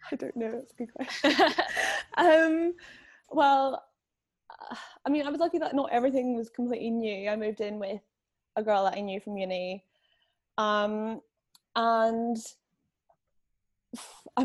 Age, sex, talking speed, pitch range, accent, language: 10-29, female, 140 wpm, 200-240 Hz, British, English